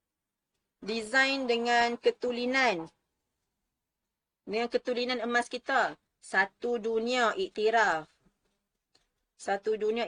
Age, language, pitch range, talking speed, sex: 30-49, Malay, 215-250 Hz, 70 wpm, female